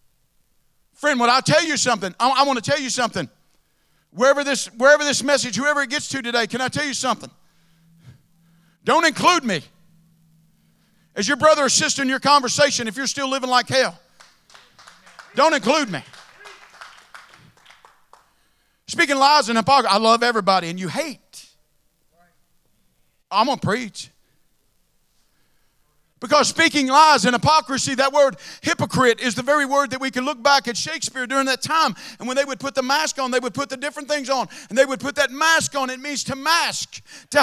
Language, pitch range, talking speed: English, 230-295 Hz, 175 wpm